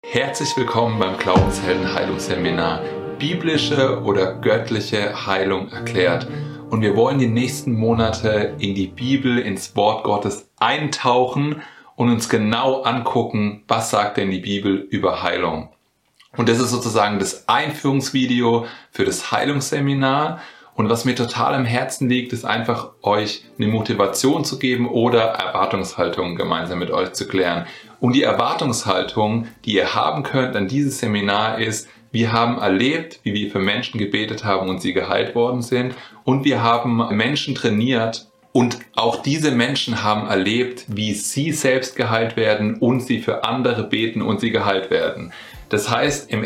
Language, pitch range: German, 105-130 Hz